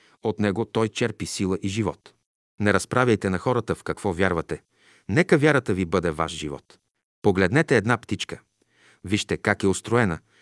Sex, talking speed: male, 155 wpm